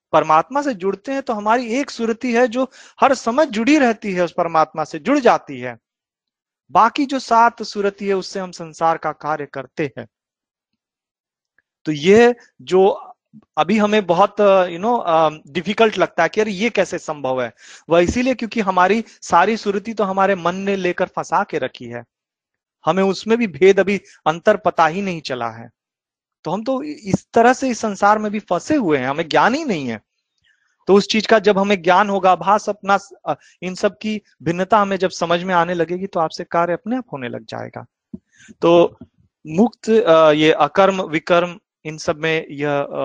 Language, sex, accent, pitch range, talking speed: Hindi, male, native, 160-215 Hz, 185 wpm